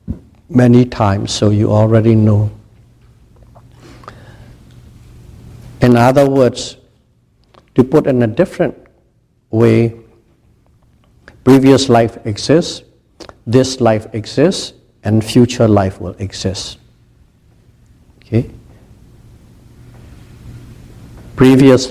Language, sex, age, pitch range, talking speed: English, male, 60-79, 110-120 Hz, 75 wpm